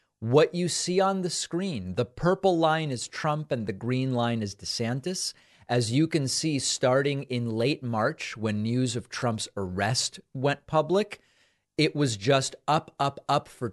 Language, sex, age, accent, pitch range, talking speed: English, male, 40-59, American, 115-155 Hz, 170 wpm